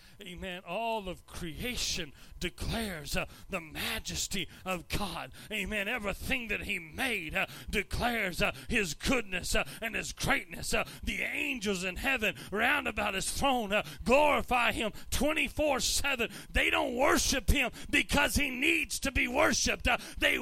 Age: 40-59